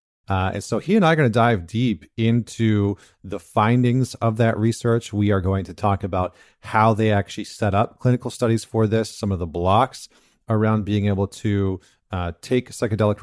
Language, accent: English, American